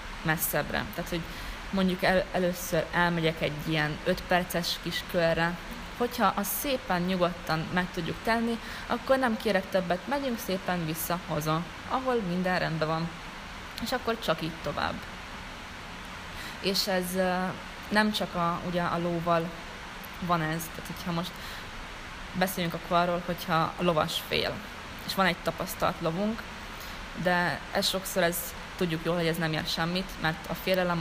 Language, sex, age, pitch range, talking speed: Hungarian, female, 20-39, 170-185 Hz, 145 wpm